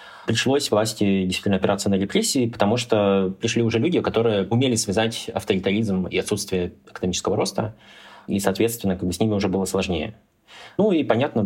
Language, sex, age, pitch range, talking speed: Russian, male, 20-39, 95-115 Hz, 160 wpm